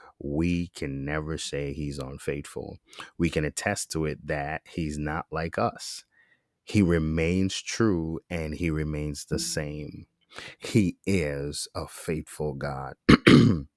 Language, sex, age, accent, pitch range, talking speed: English, male, 30-49, American, 75-90 Hz, 125 wpm